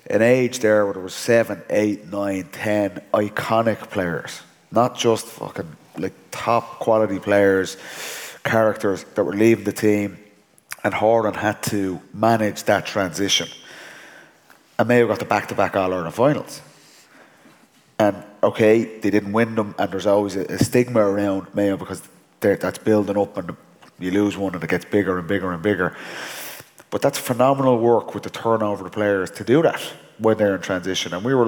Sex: male